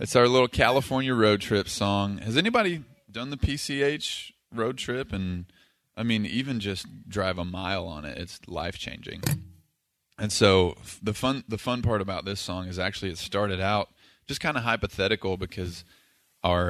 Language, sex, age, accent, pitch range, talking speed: English, male, 20-39, American, 90-105 Hz, 175 wpm